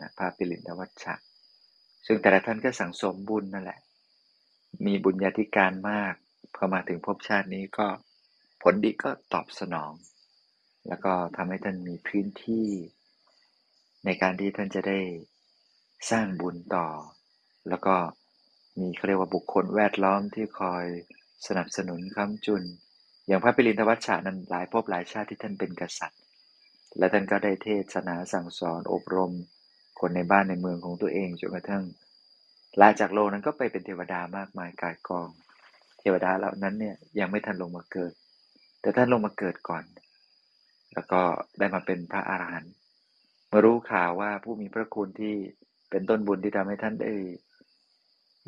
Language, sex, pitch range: Thai, male, 90-105 Hz